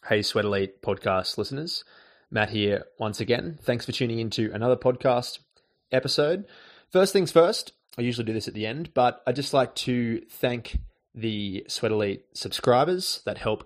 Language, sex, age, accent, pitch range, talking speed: English, male, 20-39, Australian, 95-120 Hz, 165 wpm